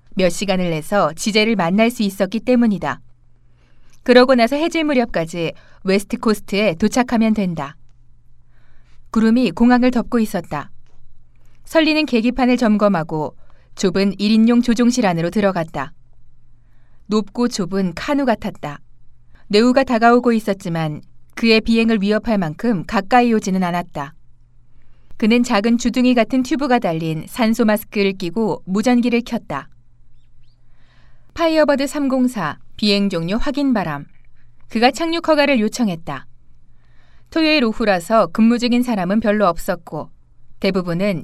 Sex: female